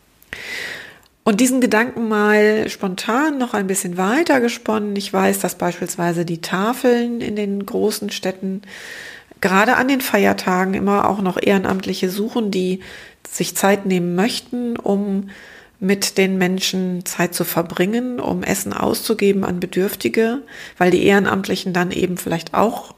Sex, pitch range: female, 185-225 Hz